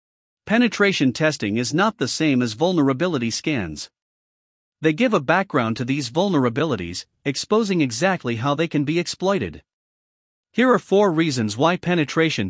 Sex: male